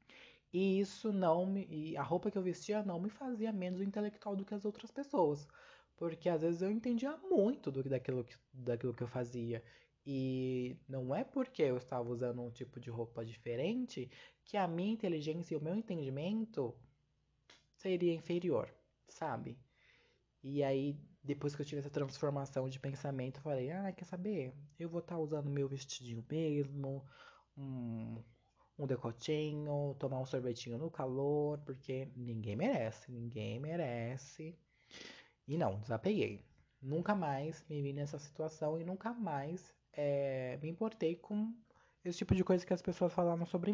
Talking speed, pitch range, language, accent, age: 160 wpm, 130-170 Hz, Portuguese, Brazilian, 20-39